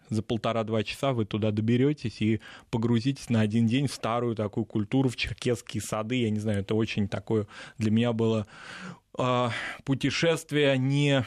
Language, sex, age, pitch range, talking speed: Russian, male, 20-39, 110-130 Hz, 155 wpm